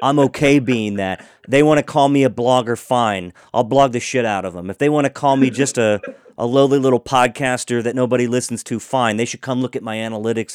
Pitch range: 100-125 Hz